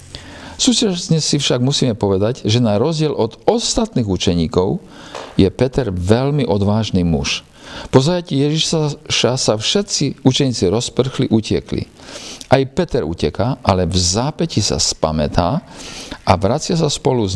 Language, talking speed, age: Slovak, 130 wpm, 50-69